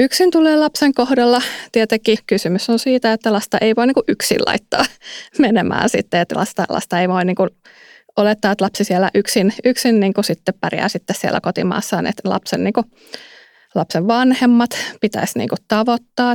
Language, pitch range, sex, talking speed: Finnish, 195-245 Hz, female, 160 wpm